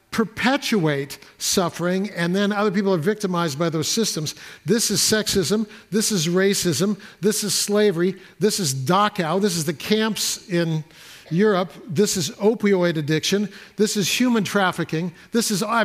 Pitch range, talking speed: 185-230 Hz, 150 wpm